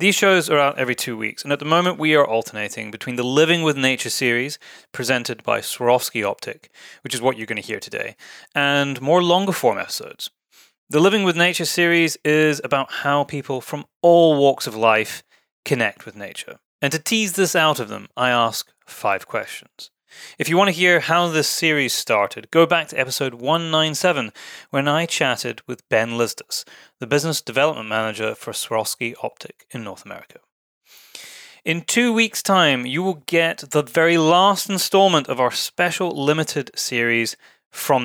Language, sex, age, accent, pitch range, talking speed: English, male, 30-49, British, 120-170 Hz, 175 wpm